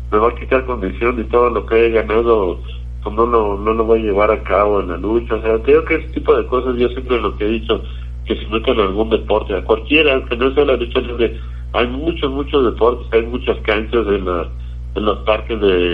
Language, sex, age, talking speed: Spanish, male, 60-79, 240 wpm